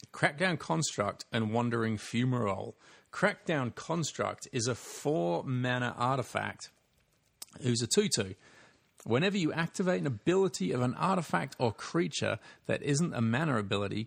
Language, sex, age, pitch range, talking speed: English, male, 40-59, 110-150 Hz, 130 wpm